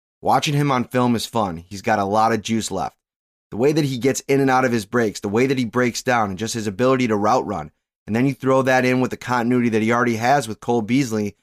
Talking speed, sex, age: 280 wpm, male, 20-39